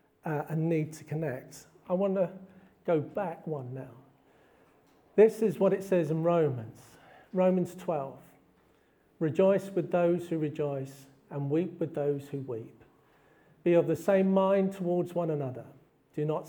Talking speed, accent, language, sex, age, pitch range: 155 wpm, British, English, male, 50-69, 145-185 Hz